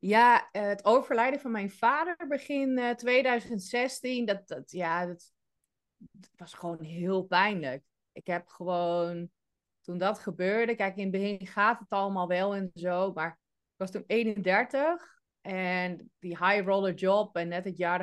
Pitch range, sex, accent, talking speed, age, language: 165-195 Hz, female, Dutch, 155 wpm, 30-49, Dutch